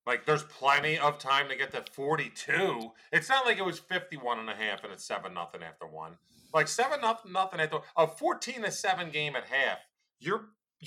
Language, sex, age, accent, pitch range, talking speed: English, male, 30-49, American, 150-190 Hz, 205 wpm